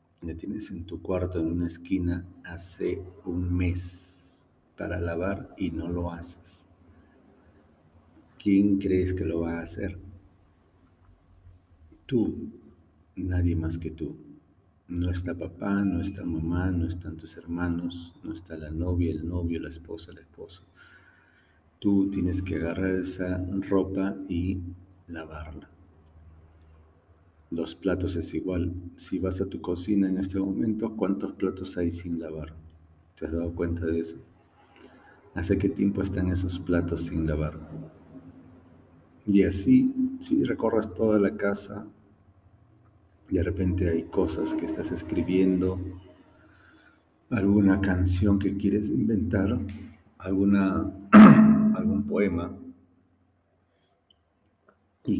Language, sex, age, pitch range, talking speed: Spanish, male, 50-69, 85-95 Hz, 120 wpm